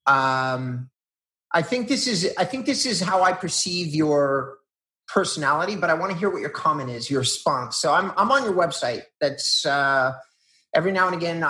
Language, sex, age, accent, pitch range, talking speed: English, male, 30-49, American, 135-170 Hz, 195 wpm